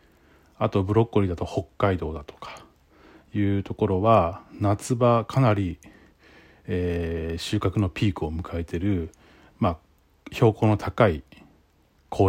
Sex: male